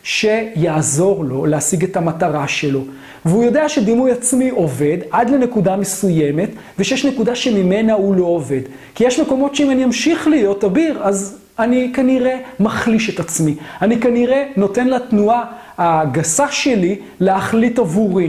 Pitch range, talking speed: 180-250 Hz, 110 wpm